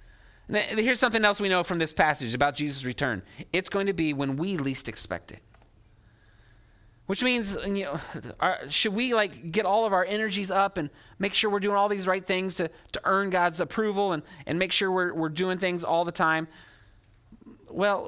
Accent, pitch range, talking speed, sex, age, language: American, 110-185 Hz, 205 wpm, male, 30-49, English